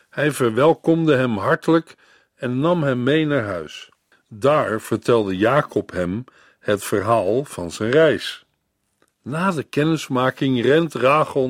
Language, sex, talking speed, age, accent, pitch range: Dutch, male, 125 wpm, 50-69, Dutch, 115-155 Hz